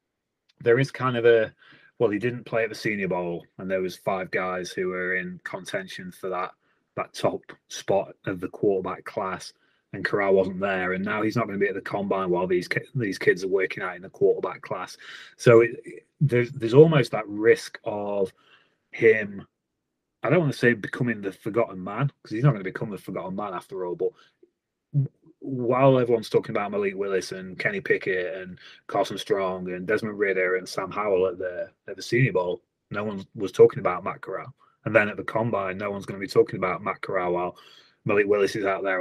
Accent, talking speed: British, 210 wpm